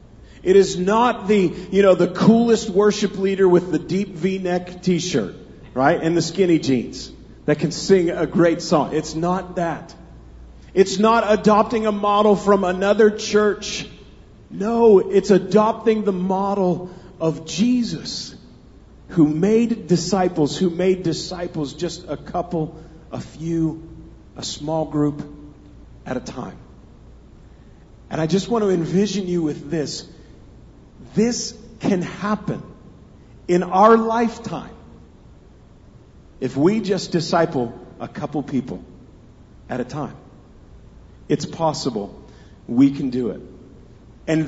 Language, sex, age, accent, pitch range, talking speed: English, male, 40-59, American, 145-195 Hz, 125 wpm